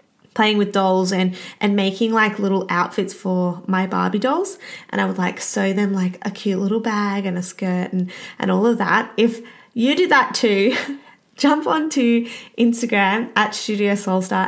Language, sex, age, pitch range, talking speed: English, female, 20-39, 195-245 Hz, 180 wpm